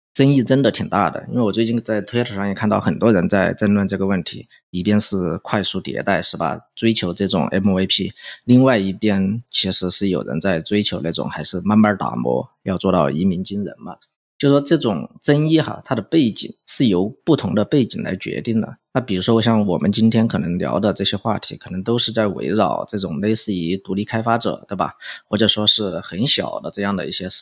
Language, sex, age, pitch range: Chinese, male, 20-39, 95-115 Hz